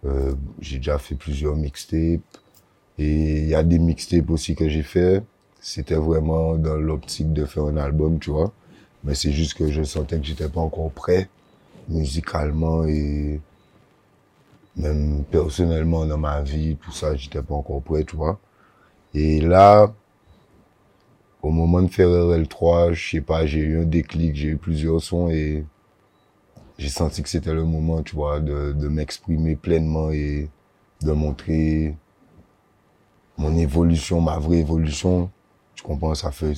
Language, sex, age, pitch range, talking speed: French, male, 30-49, 75-85 Hz, 155 wpm